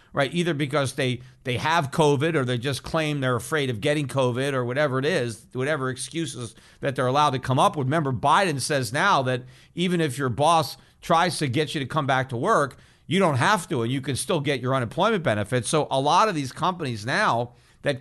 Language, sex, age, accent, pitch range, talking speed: English, male, 50-69, American, 130-165 Hz, 225 wpm